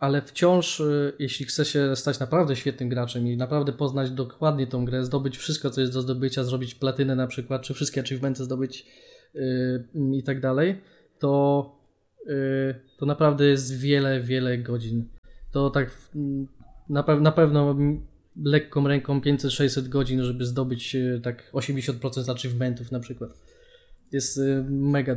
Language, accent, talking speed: Polish, native, 135 wpm